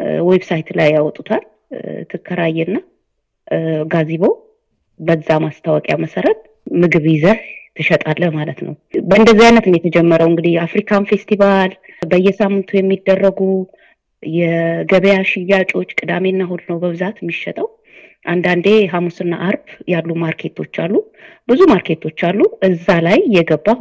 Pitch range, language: 170-215 Hz, Amharic